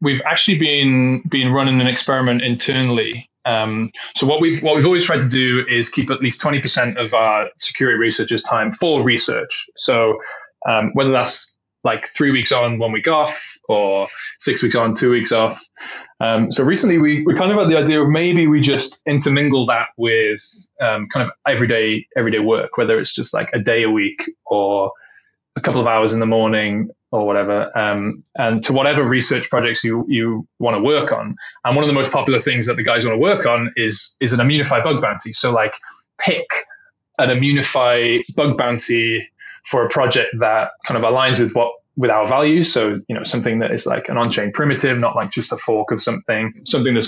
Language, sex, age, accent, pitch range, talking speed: English, male, 20-39, British, 115-150 Hz, 205 wpm